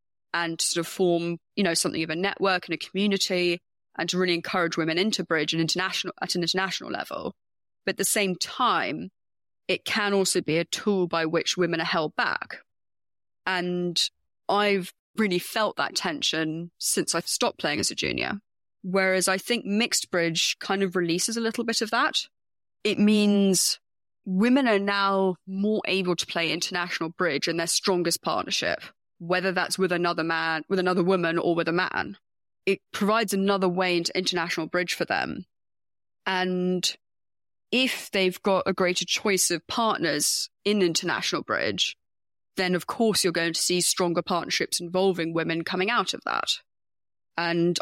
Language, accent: English, British